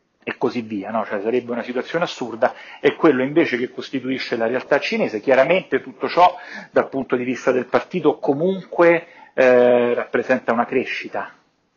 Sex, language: male, Italian